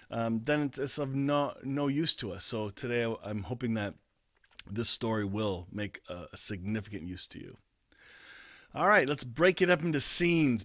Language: English